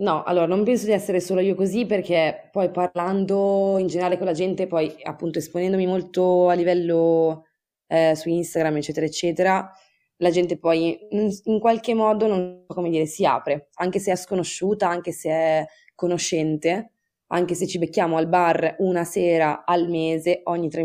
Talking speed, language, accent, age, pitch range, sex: 175 wpm, Italian, native, 20-39, 160-185 Hz, female